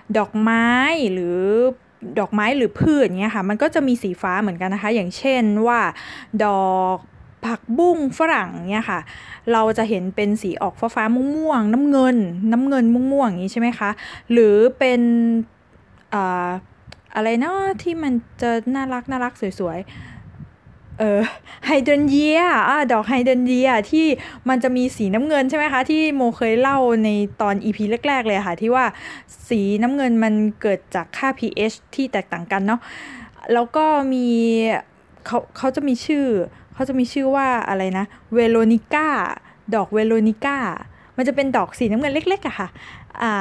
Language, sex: Thai, female